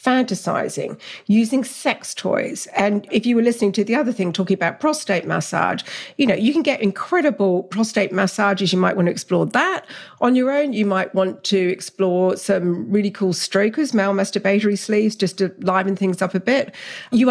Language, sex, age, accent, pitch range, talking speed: English, female, 50-69, British, 195-275 Hz, 185 wpm